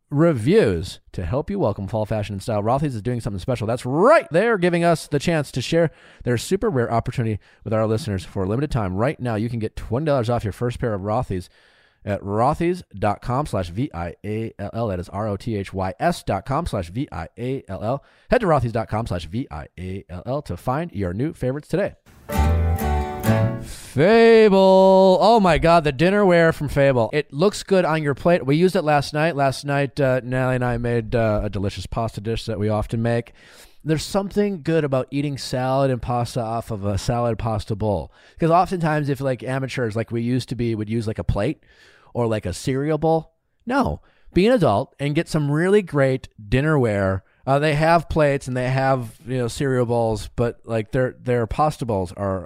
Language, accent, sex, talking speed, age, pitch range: English, American, male, 185 wpm, 30-49, 110-150 Hz